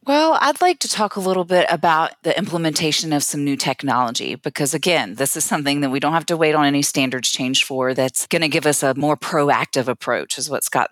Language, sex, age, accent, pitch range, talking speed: English, female, 30-49, American, 130-160 Hz, 235 wpm